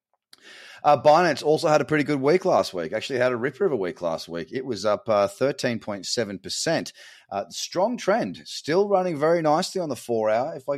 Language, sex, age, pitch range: English, male, 30-49, 100-140 Hz